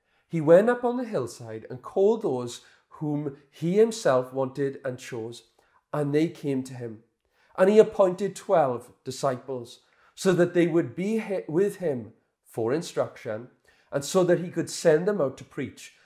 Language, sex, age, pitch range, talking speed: English, male, 30-49, 125-170 Hz, 165 wpm